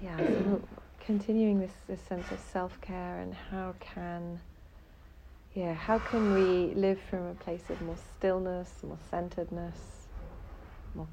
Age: 40-59